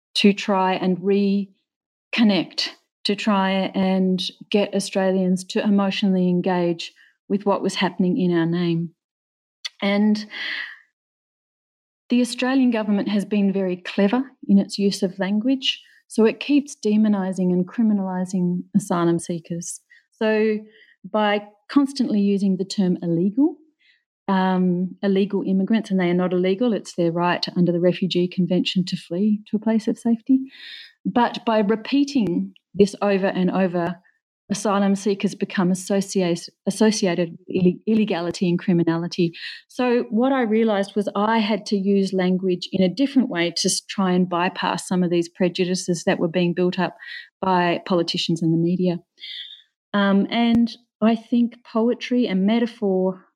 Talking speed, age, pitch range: 140 wpm, 40-59, 180-220 Hz